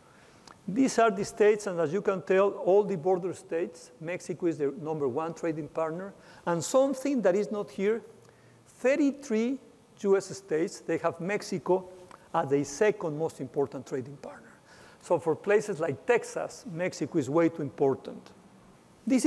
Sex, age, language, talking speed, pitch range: male, 50-69, English, 155 wpm, 160-205 Hz